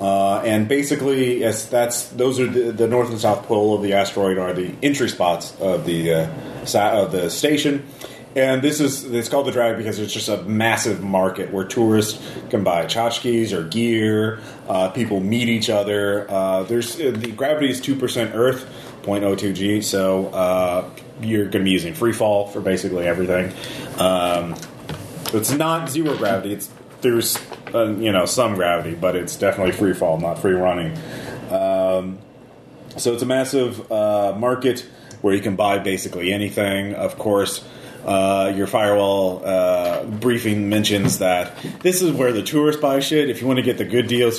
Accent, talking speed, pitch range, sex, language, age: American, 175 wpm, 95-125 Hz, male, English, 30-49